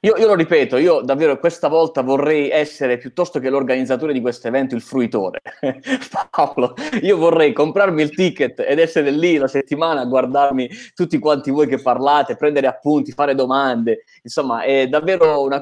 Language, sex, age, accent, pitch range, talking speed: Italian, male, 20-39, native, 125-165 Hz, 170 wpm